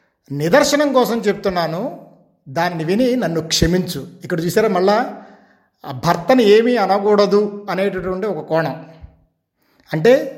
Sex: male